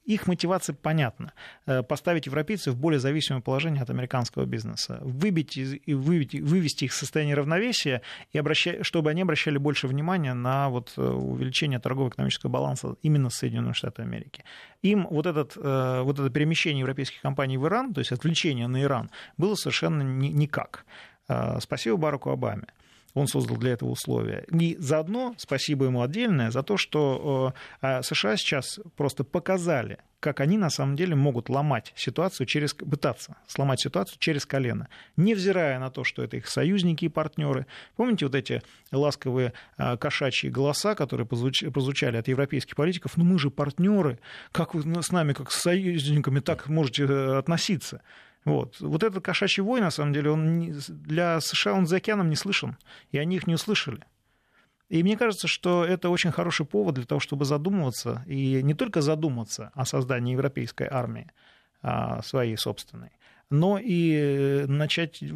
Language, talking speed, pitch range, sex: Russian, 155 wpm, 135-170 Hz, male